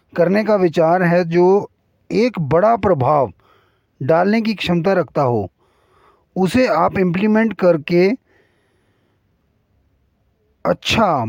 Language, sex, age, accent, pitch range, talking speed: Hindi, male, 30-49, native, 140-205 Hz, 95 wpm